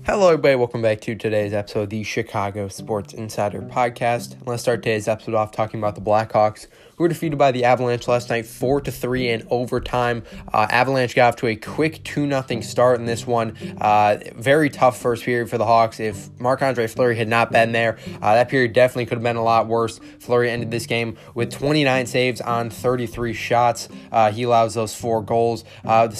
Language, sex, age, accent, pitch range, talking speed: English, male, 20-39, American, 115-130 Hz, 210 wpm